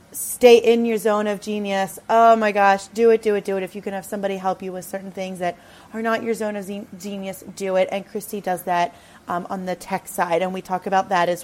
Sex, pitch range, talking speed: female, 190-235 Hz, 255 wpm